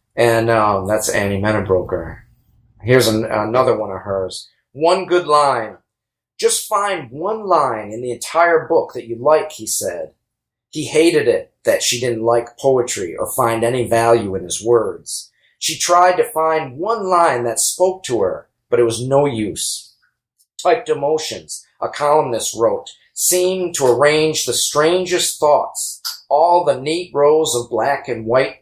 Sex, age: male, 40-59